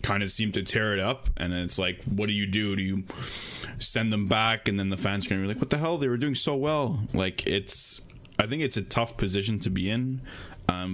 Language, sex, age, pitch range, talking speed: English, male, 20-39, 95-110 Hz, 260 wpm